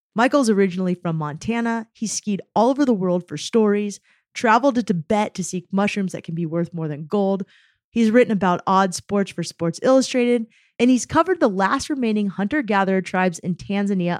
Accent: American